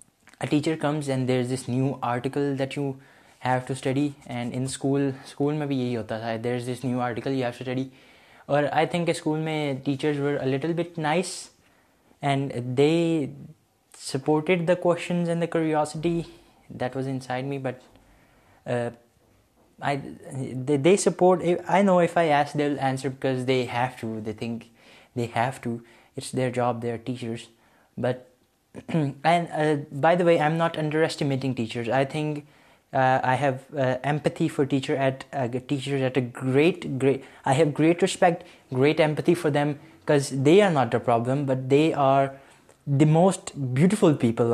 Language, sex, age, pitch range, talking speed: Urdu, male, 20-39, 125-155 Hz, 175 wpm